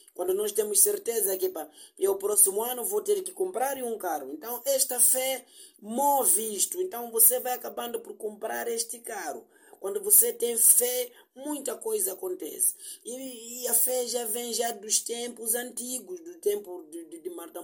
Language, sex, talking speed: Portuguese, male, 170 wpm